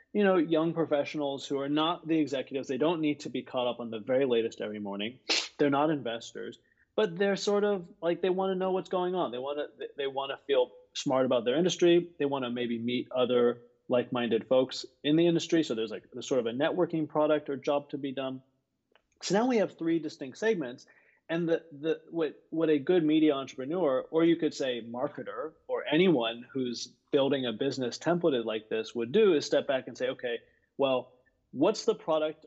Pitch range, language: 125-175 Hz, English